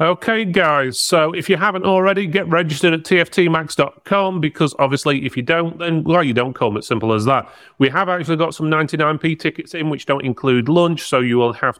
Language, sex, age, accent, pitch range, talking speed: English, male, 30-49, British, 110-140 Hz, 210 wpm